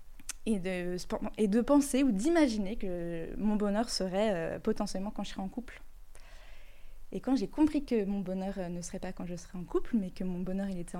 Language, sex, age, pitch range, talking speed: French, female, 20-39, 185-225 Hz, 220 wpm